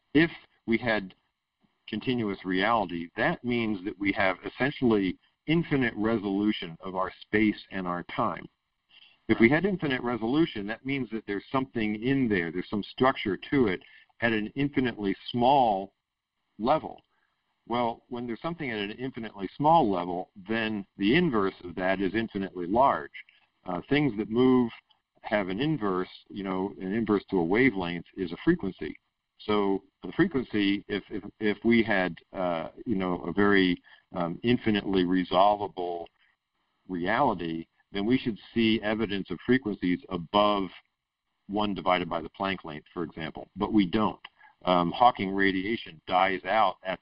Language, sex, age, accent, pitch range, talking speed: English, male, 50-69, American, 90-115 Hz, 150 wpm